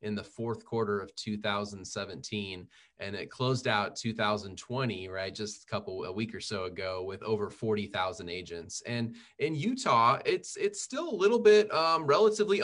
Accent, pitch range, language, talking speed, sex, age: American, 105-135 Hz, English, 165 wpm, male, 20-39